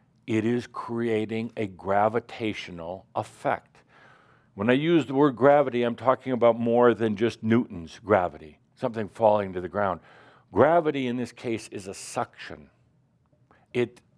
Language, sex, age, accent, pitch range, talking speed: English, male, 60-79, American, 110-135 Hz, 140 wpm